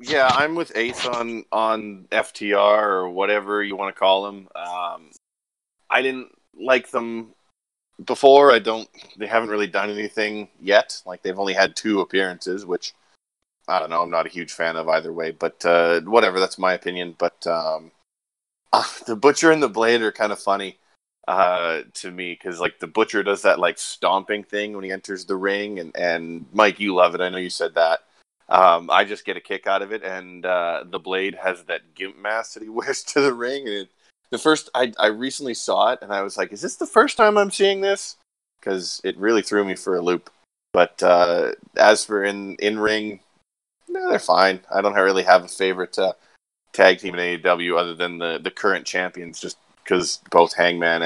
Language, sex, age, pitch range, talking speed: English, male, 20-39, 90-110 Hz, 205 wpm